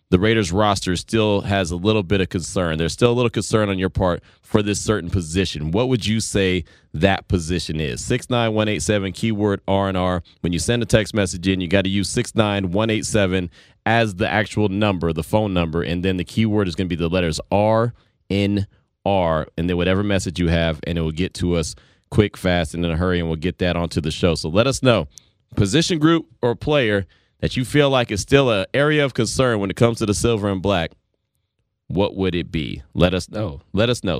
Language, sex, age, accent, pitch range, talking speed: English, male, 30-49, American, 90-115 Hz, 235 wpm